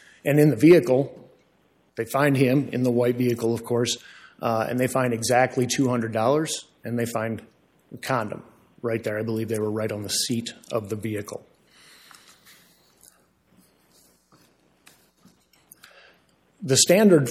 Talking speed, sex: 135 wpm, male